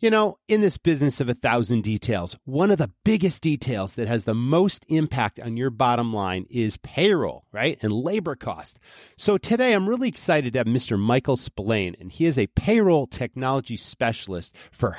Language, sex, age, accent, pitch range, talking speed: English, male, 40-59, American, 110-170 Hz, 190 wpm